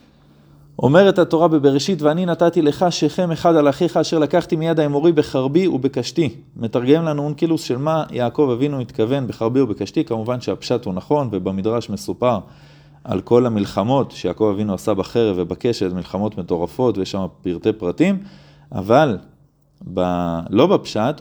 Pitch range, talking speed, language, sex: 110-150 Hz, 140 wpm, Hebrew, male